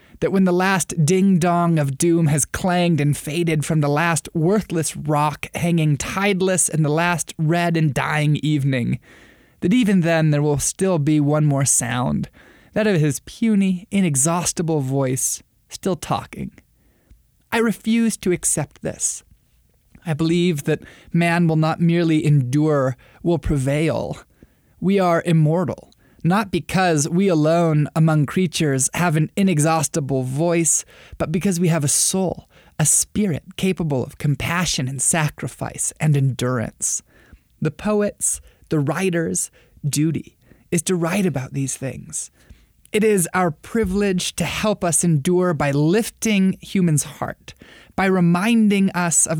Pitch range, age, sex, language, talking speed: 150-185 Hz, 20-39, male, English, 135 wpm